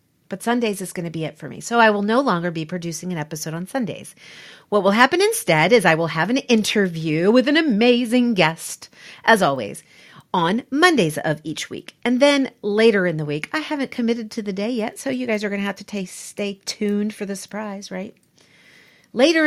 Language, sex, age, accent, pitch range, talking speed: English, female, 40-59, American, 170-235 Hz, 215 wpm